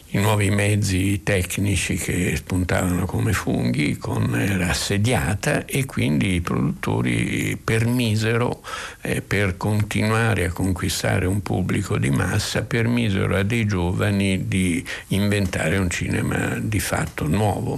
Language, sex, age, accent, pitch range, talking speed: Italian, male, 60-79, native, 95-110 Hz, 120 wpm